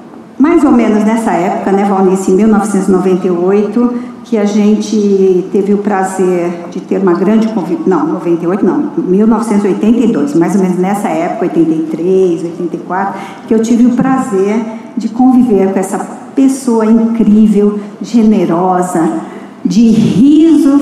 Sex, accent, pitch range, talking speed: female, Brazilian, 185-225 Hz, 130 wpm